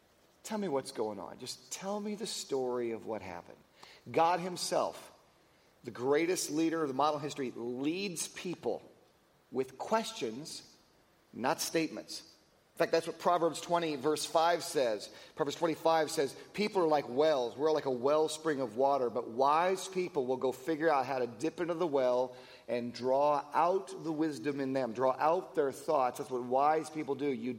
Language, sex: English, male